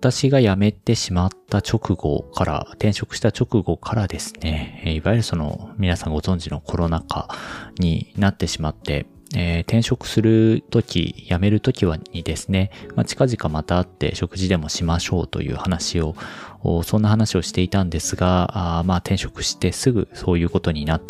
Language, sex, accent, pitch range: Japanese, male, native, 85-110 Hz